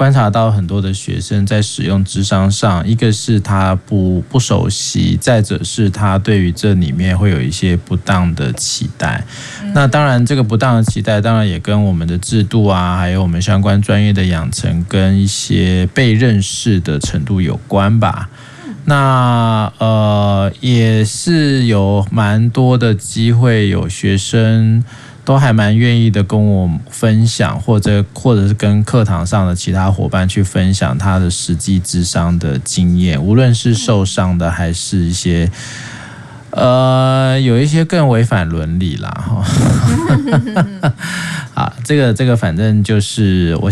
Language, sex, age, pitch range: Chinese, male, 20-39, 95-125 Hz